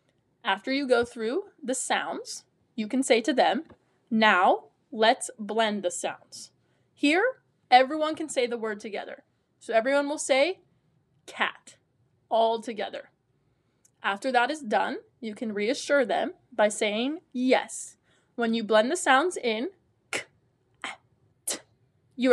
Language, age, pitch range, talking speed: English, 20-39, 215-275 Hz, 135 wpm